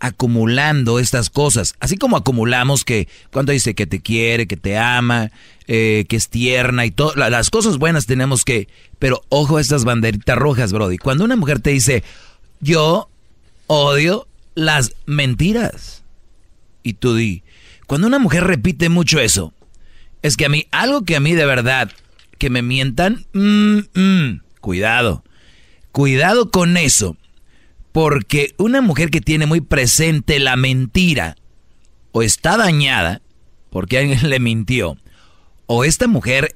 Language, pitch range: Spanish, 115-155 Hz